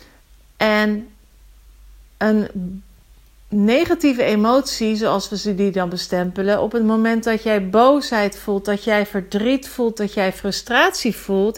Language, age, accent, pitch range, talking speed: Dutch, 40-59, Dutch, 200-235 Hz, 130 wpm